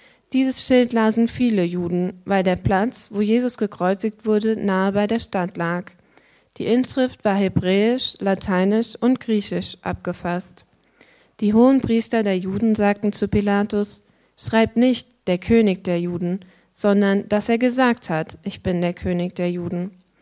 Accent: German